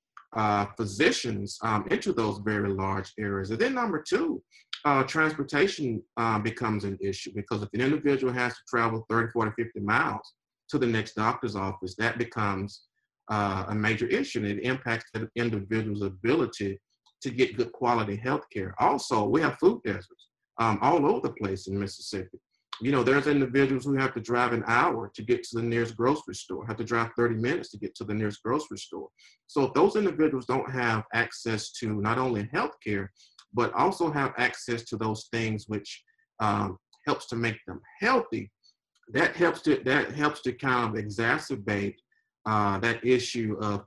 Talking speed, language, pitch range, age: 180 wpm, English, 105-125 Hz, 40-59